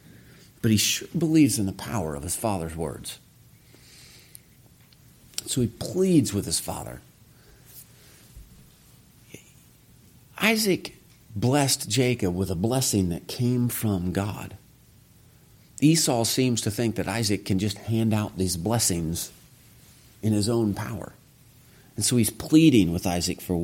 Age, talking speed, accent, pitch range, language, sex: 40-59, 125 wpm, American, 95-125 Hz, English, male